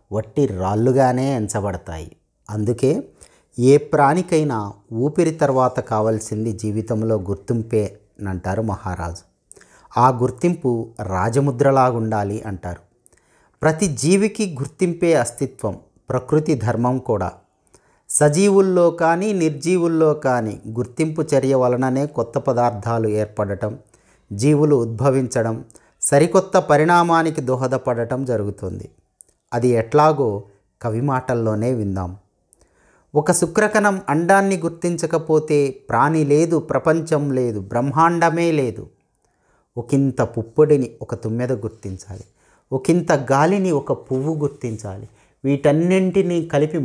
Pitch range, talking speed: 110-150 Hz, 85 wpm